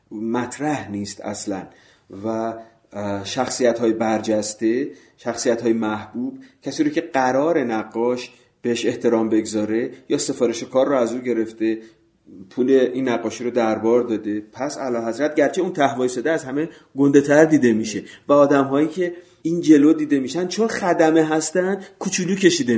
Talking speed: 150 wpm